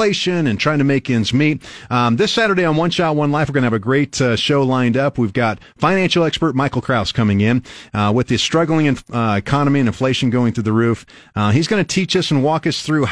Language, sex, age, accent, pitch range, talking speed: English, male, 40-59, American, 110-150 Hz, 250 wpm